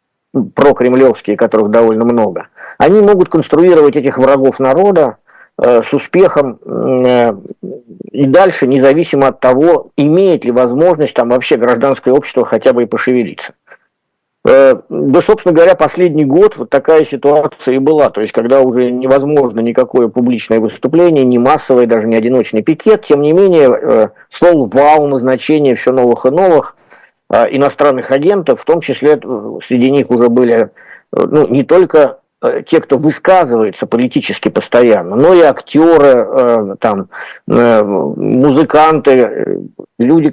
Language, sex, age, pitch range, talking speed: Russian, male, 50-69, 125-155 Hz, 130 wpm